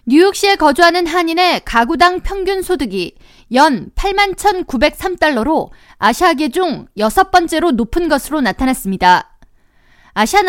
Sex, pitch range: female, 270-370 Hz